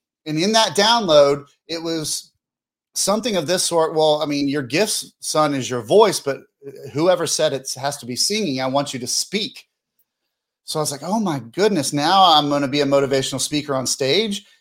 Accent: American